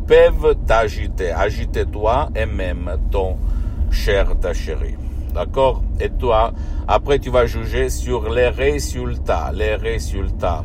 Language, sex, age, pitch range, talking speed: Italian, male, 60-79, 75-95 Hz, 125 wpm